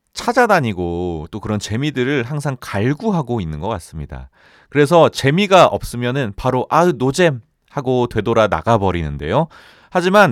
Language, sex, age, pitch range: Korean, male, 30-49, 100-160 Hz